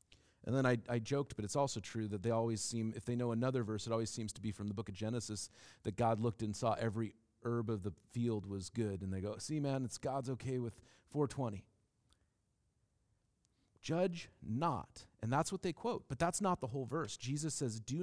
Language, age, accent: English, 40-59, American